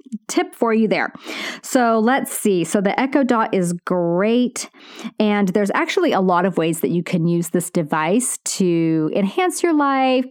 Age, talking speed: 30-49, 175 wpm